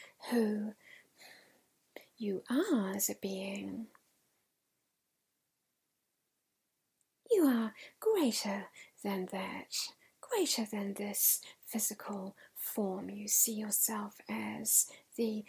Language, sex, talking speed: English, female, 80 wpm